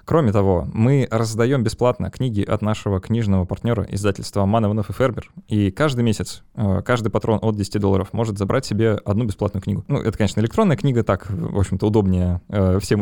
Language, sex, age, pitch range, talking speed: Russian, male, 20-39, 100-120 Hz, 175 wpm